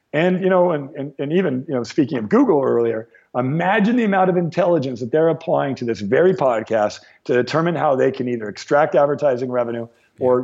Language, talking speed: English, 200 wpm